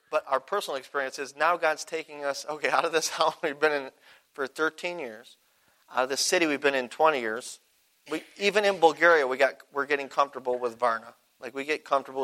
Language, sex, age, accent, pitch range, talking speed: English, male, 40-59, American, 130-160 Hz, 215 wpm